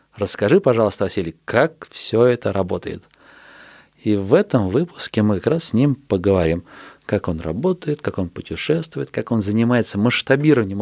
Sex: male